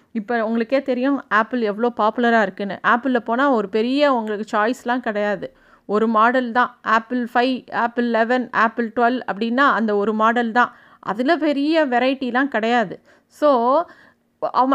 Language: Tamil